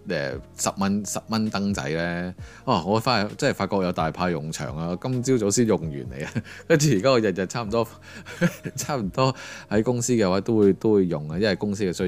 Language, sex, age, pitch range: Chinese, male, 20-39, 85-110 Hz